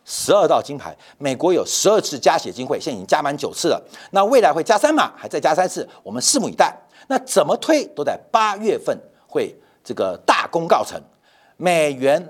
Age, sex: 50-69, male